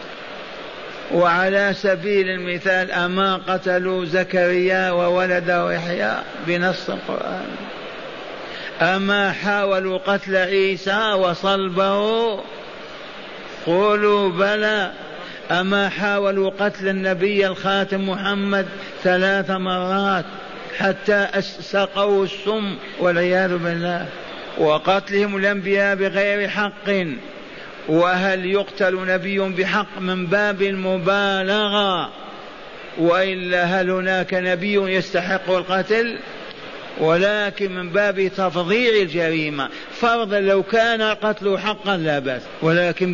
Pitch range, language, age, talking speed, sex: 185-205 Hz, Arabic, 50-69, 85 wpm, male